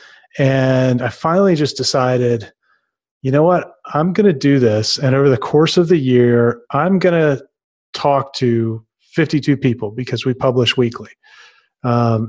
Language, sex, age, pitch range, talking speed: English, male, 30-49, 125-155 Hz, 155 wpm